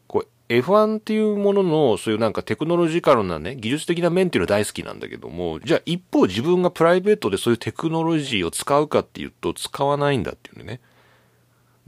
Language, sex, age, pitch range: Japanese, male, 40-59, 105-180 Hz